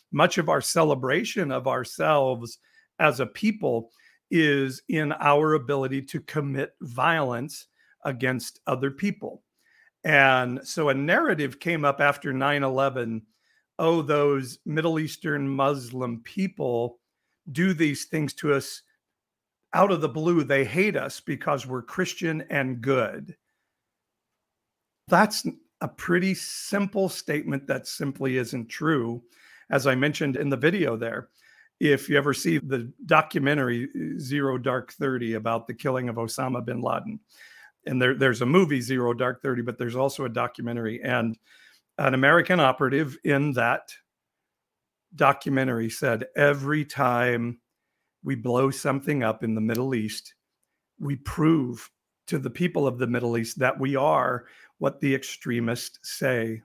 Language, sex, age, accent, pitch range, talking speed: English, male, 50-69, American, 125-155 Hz, 135 wpm